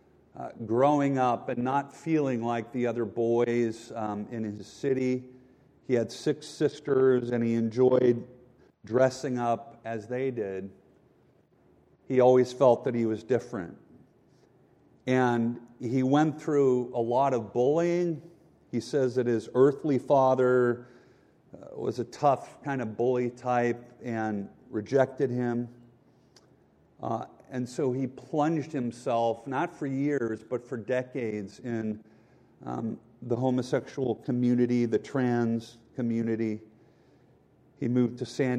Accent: American